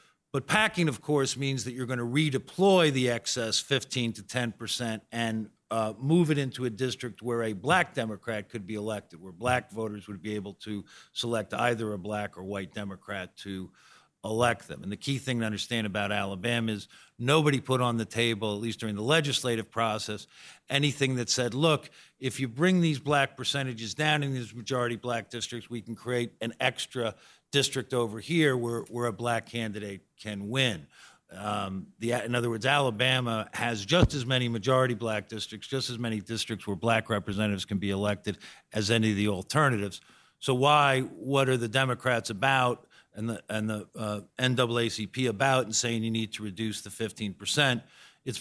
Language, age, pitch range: English, 50-69, 105-130 Hz